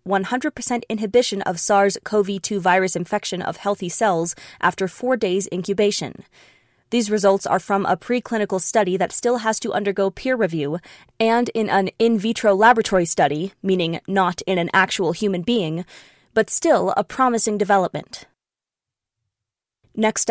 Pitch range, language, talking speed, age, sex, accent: 190-225 Hz, English, 140 wpm, 20-39, female, American